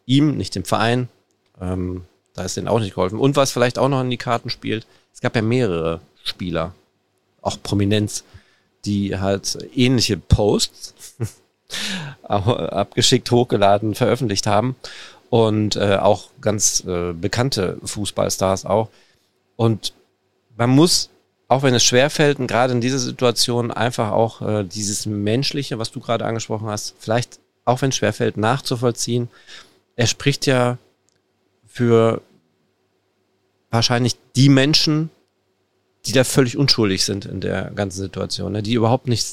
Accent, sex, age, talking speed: German, male, 40-59, 135 wpm